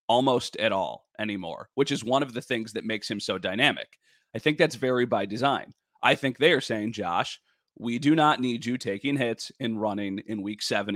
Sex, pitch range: male, 110-150 Hz